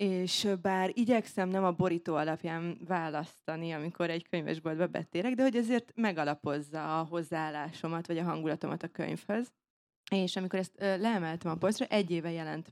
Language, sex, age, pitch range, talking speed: Hungarian, female, 20-39, 165-200 Hz, 150 wpm